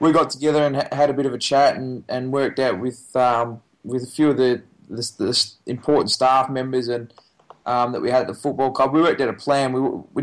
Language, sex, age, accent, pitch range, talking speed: English, male, 20-39, Australian, 125-140 Hz, 245 wpm